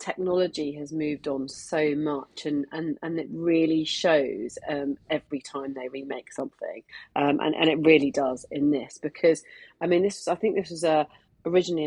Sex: female